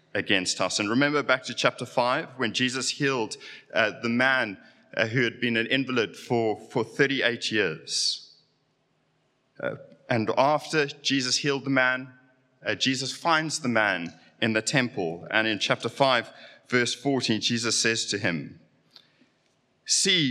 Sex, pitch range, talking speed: male, 110-140 Hz, 150 wpm